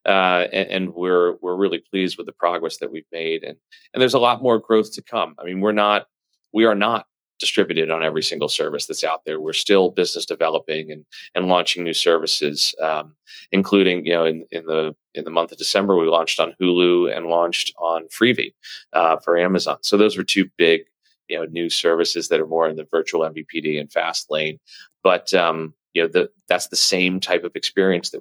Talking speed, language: 210 wpm, English